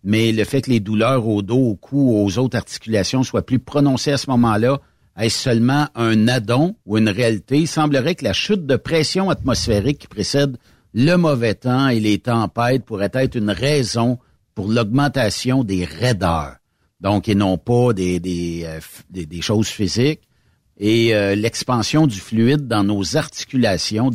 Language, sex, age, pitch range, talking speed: French, male, 60-79, 100-130 Hz, 170 wpm